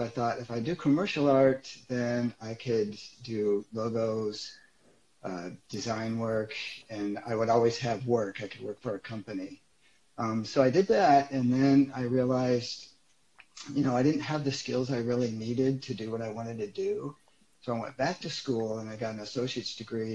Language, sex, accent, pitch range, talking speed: English, male, American, 110-135 Hz, 195 wpm